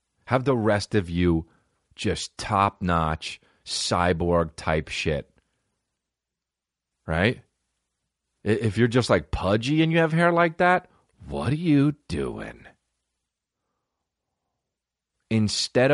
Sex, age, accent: male, 30-49, American